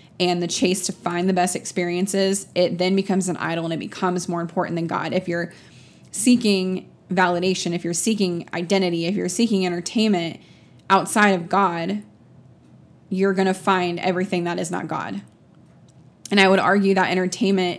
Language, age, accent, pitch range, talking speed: English, 20-39, American, 180-210 Hz, 170 wpm